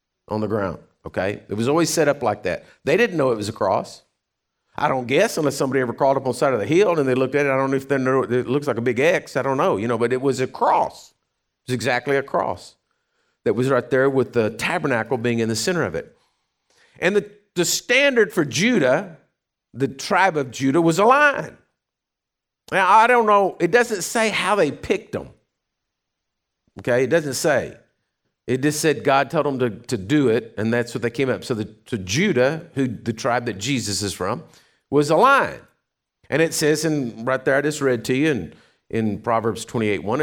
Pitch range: 120-170 Hz